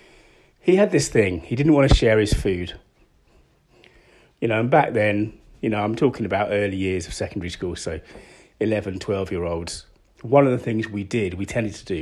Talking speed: 205 wpm